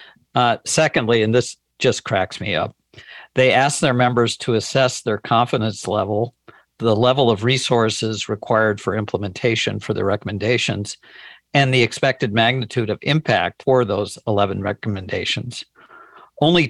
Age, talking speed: 50-69, 135 wpm